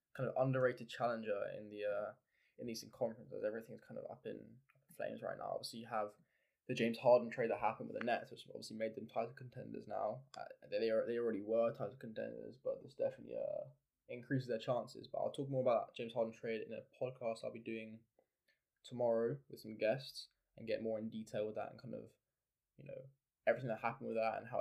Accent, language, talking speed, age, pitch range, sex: British, English, 220 wpm, 10-29, 110-130 Hz, male